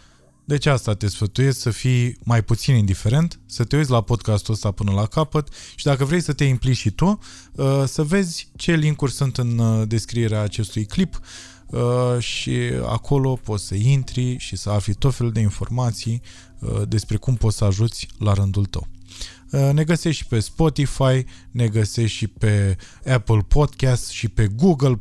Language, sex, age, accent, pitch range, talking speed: Romanian, male, 20-39, native, 105-135 Hz, 165 wpm